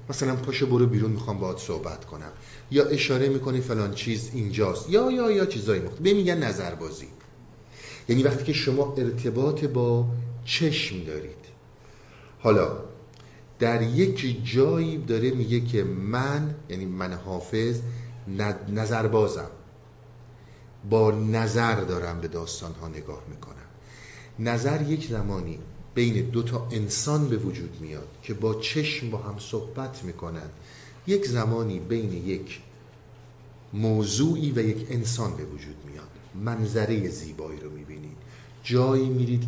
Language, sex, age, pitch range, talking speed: Persian, male, 50-69, 110-135 Hz, 130 wpm